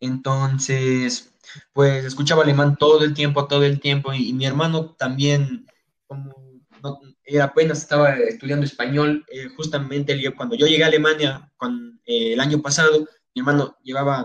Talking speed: 145 wpm